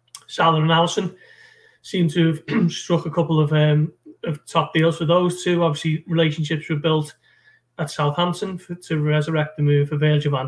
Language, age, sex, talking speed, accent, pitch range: English, 30-49, male, 180 wpm, British, 150-170 Hz